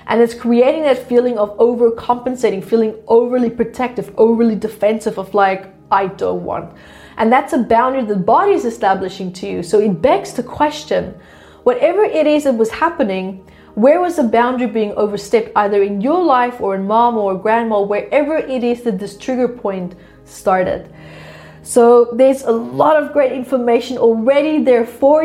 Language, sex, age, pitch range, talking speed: English, female, 30-49, 210-260 Hz, 170 wpm